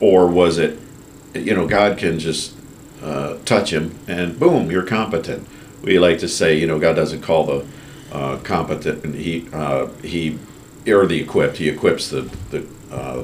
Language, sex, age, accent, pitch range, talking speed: English, male, 50-69, American, 75-105 Hz, 175 wpm